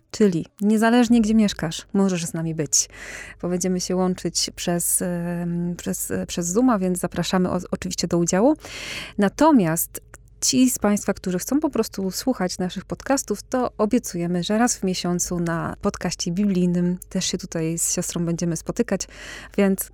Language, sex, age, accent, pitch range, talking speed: Polish, female, 20-39, native, 180-220 Hz, 145 wpm